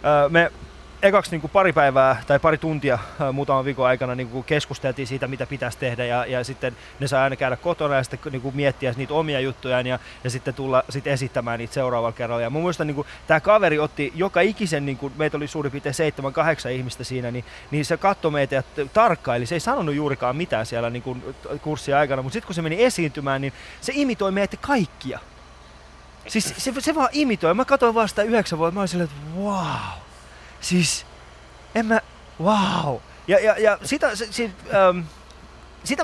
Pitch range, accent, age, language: 130-175 Hz, native, 20-39, Finnish